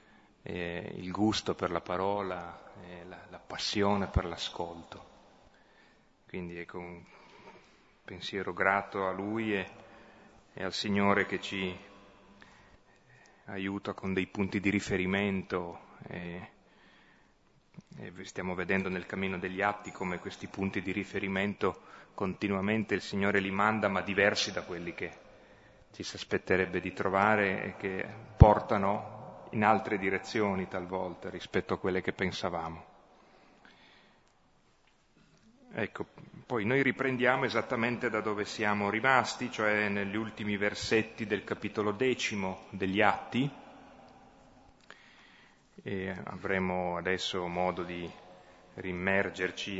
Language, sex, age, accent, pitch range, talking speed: Italian, male, 30-49, native, 90-105 Hz, 115 wpm